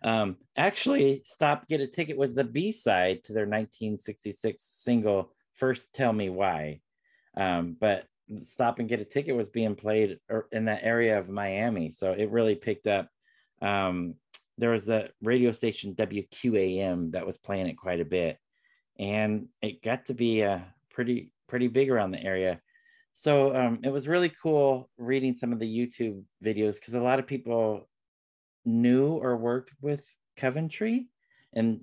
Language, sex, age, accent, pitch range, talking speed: English, male, 30-49, American, 100-130 Hz, 165 wpm